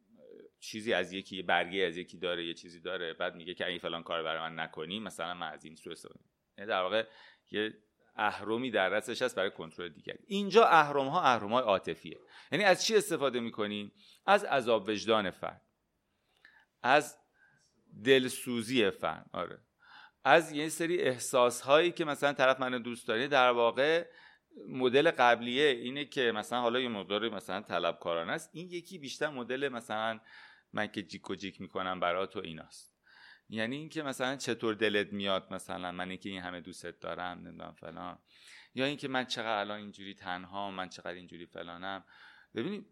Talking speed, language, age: 170 wpm, Persian, 30-49